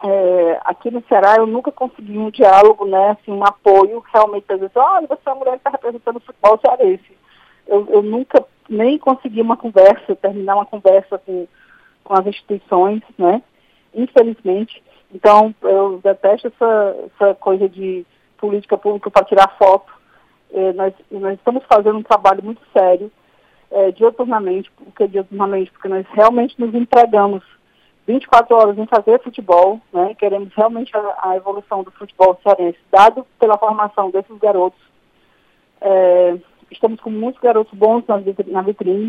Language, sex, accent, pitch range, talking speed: Portuguese, female, Brazilian, 195-235 Hz, 155 wpm